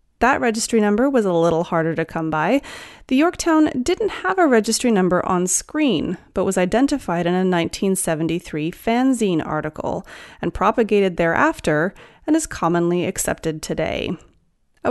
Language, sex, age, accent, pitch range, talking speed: English, female, 30-49, American, 180-265 Hz, 145 wpm